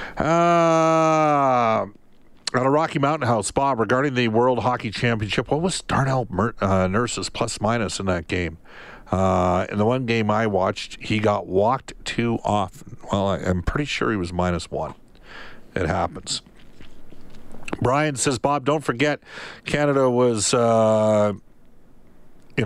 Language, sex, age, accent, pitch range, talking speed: English, male, 50-69, American, 100-130 Hz, 145 wpm